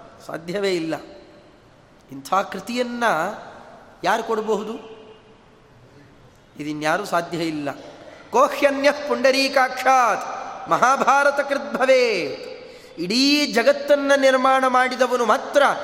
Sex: male